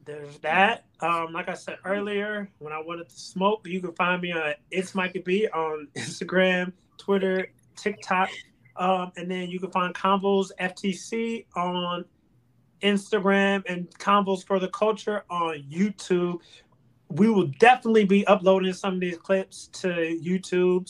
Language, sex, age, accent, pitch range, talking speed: English, male, 30-49, American, 160-195 Hz, 150 wpm